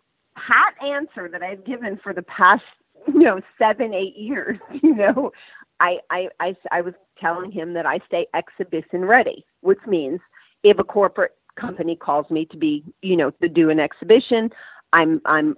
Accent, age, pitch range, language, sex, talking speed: American, 40-59, 160-225 Hz, English, female, 175 wpm